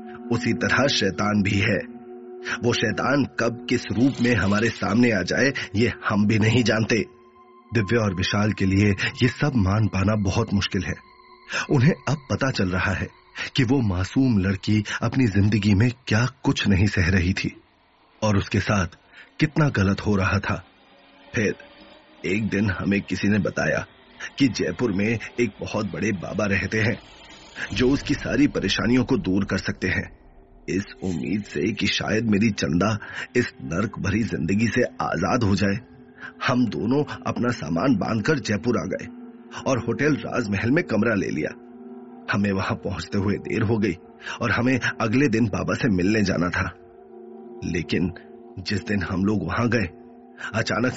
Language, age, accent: Hindi, 30-49, native